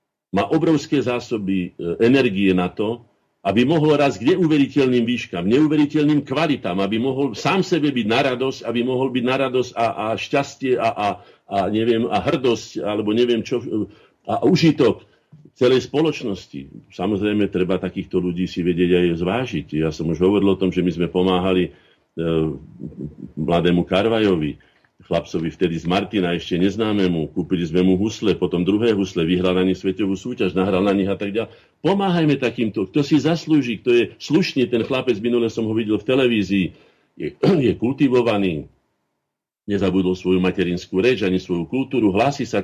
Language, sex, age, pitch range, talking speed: Slovak, male, 50-69, 90-125 Hz, 165 wpm